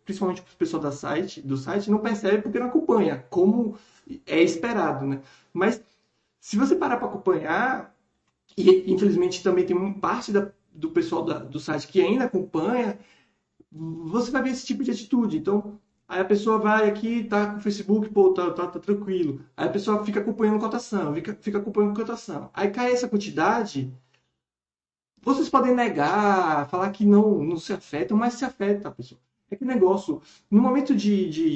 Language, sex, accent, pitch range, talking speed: Portuguese, male, Brazilian, 175-230 Hz, 180 wpm